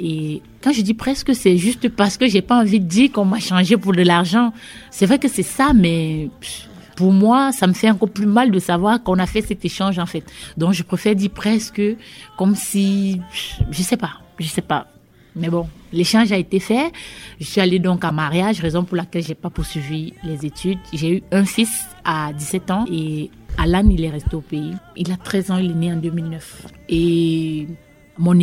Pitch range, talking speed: 160-205 Hz, 230 wpm